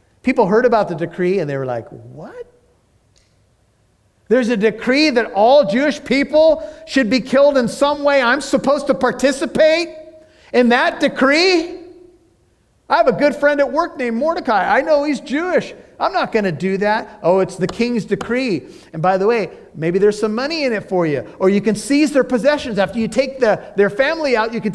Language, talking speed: English, 190 wpm